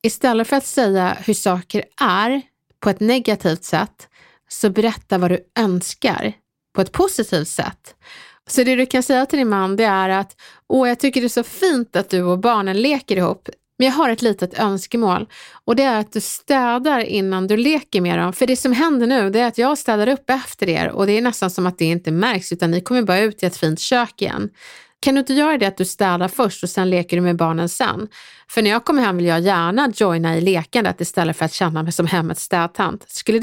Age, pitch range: 30-49, 180-250 Hz